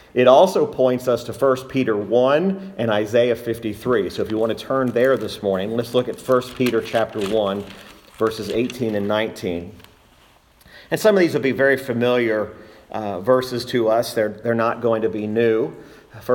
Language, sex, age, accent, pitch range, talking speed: English, male, 40-59, American, 105-125 Hz, 185 wpm